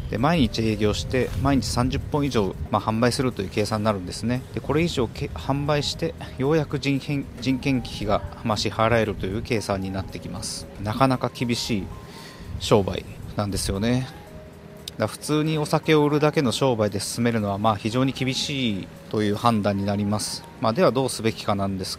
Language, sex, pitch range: Japanese, male, 100-130 Hz